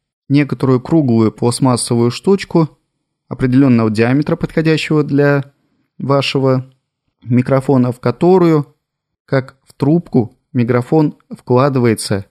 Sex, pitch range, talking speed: male, 115-150 Hz, 85 wpm